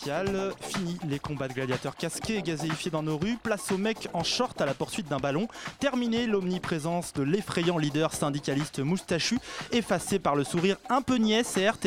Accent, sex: French, male